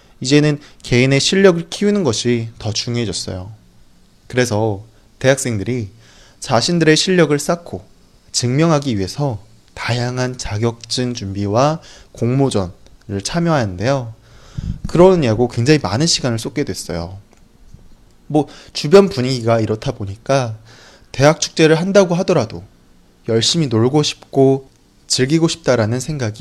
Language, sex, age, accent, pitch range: Chinese, male, 20-39, Korean, 110-150 Hz